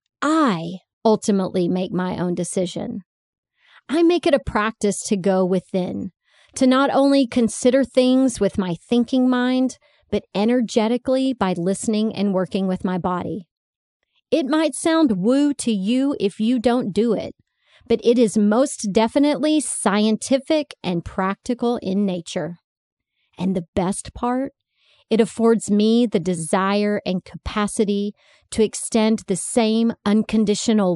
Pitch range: 185-235 Hz